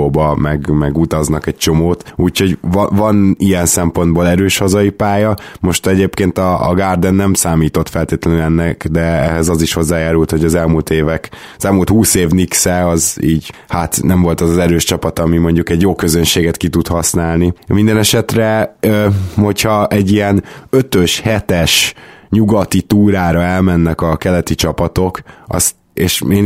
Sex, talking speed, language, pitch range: male, 155 wpm, Hungarian, 85-100 Hz